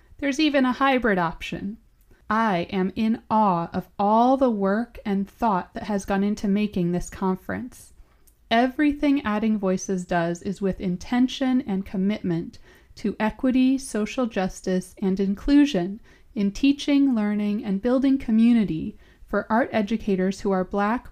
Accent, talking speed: American, 140 wpm